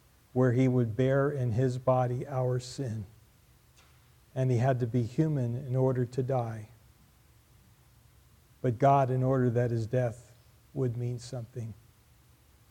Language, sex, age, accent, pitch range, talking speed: English, male, 50-69, American, 115-130 Hz, 135 wpm